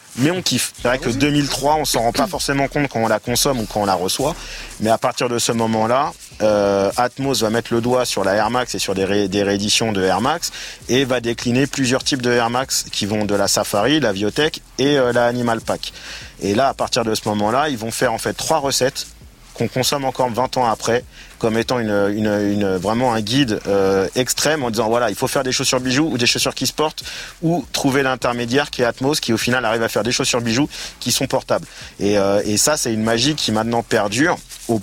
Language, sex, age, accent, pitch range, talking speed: French, male, 30-49, French, 110-135 Hz, 245 wpm